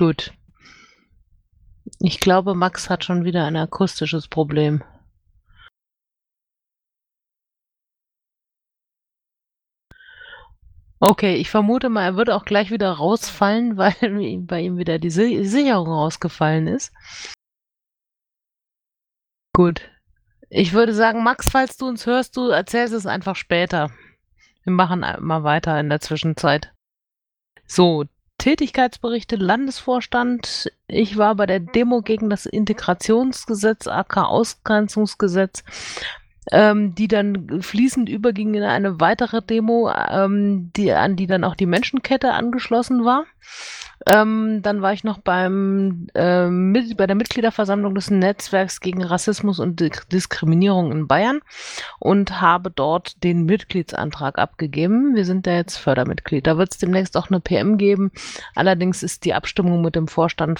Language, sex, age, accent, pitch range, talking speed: German, female, 30-49, German, 170-215 Hz, 125 wpm